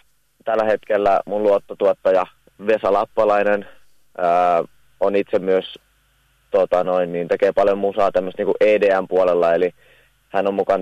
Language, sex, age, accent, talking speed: Finnish, male, 30-49, native, 130 wpm